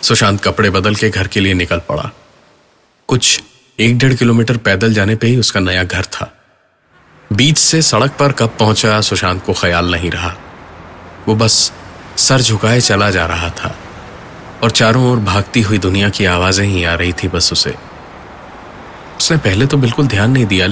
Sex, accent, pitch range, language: male, native, 95-125 Hz, Hindi